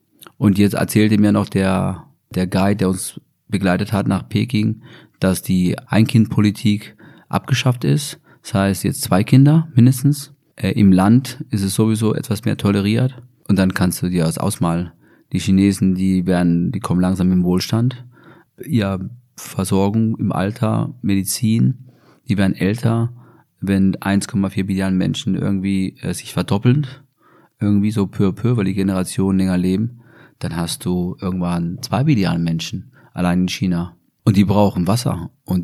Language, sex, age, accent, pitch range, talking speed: German, male, 30-49, German, 90-110 Hz, 155 wpm